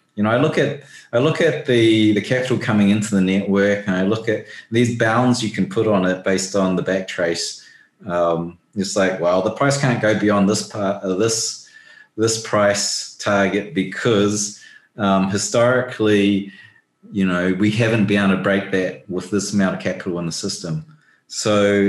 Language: English